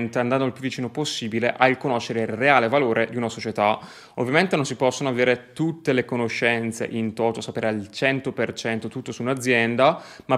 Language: Italian